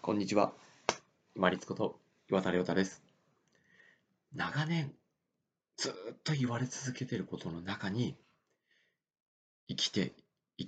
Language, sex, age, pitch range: Japanese, male, 40-59, 95-135 Hz